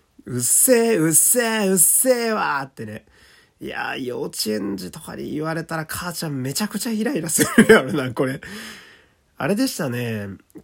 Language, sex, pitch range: Japanese, male, 115-175 Hz